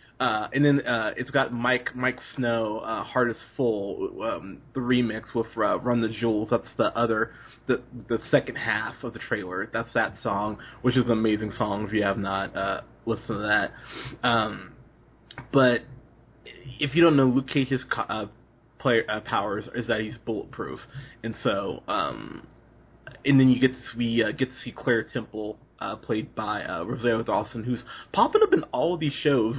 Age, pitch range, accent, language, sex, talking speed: 20-39, 110-130 Hz, American, English, male, 185 wpm